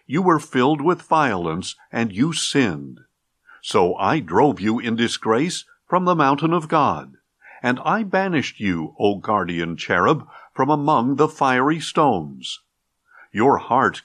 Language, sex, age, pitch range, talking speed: English, male, 50-69, 115-165 Hz, 140 wpm